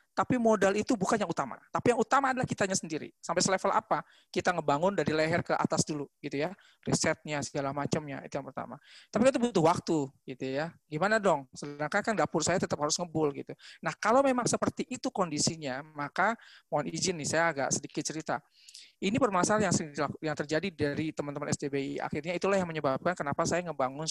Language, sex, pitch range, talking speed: Indonesian, male, 150-190 Hz, 185 wpm